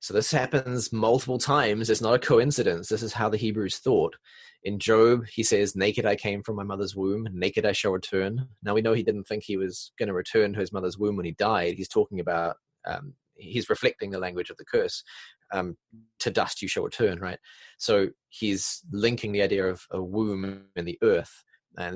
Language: English